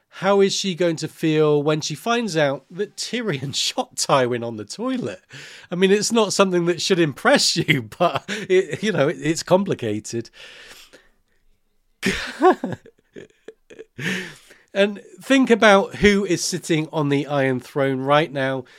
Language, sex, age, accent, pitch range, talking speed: English, male, 40-59, British, 140-190 Hz, 135 wpm